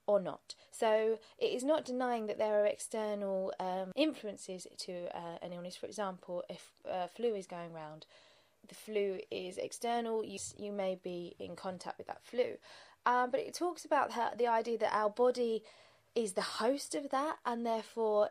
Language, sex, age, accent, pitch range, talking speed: English, female, 20-39, British, 190-240 Hz, 180 wpm